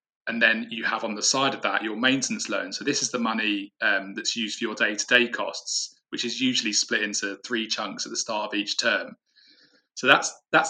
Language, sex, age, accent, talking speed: English, male, 20-39, British, 225 wpm